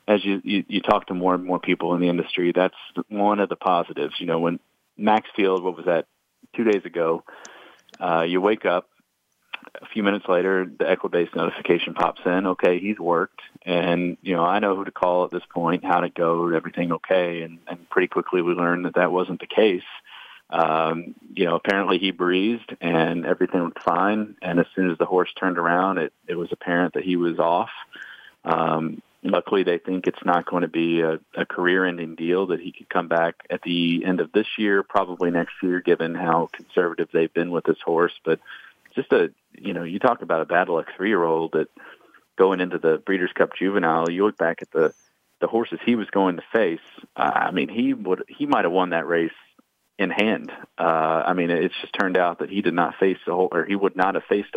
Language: English